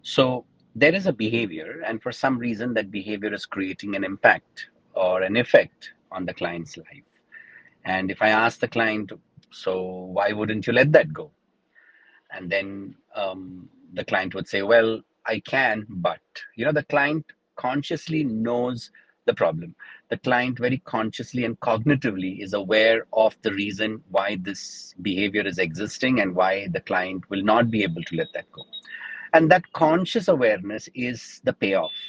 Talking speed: 165 wpm